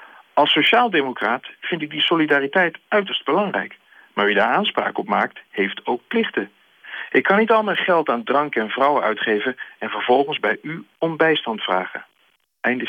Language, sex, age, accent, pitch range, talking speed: Dutch, male, 50-69, Dutch, 125-180 Hz, 170 wpm